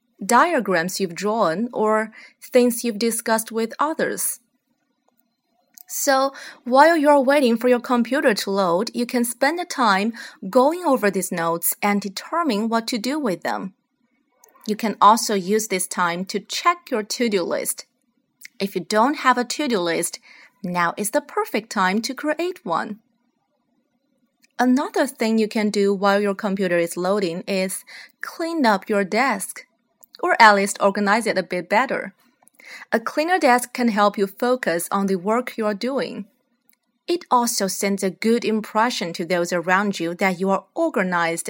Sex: female